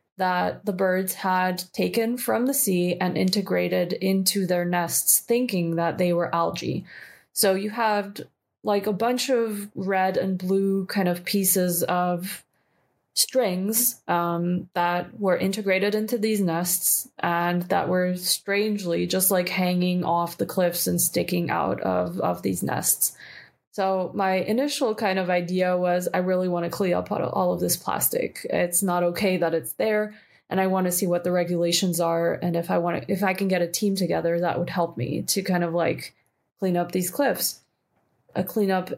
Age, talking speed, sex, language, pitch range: 20-39, 175 wpm, female, English, 175-195 Hz